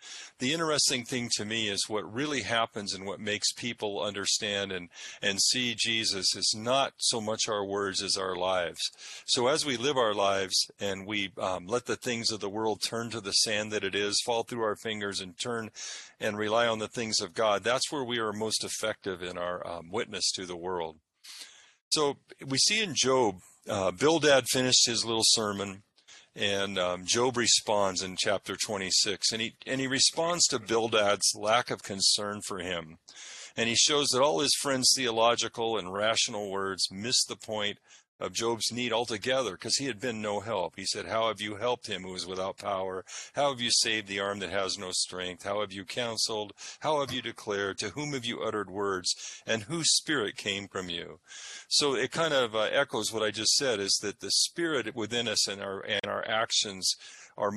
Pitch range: 100-120 Hz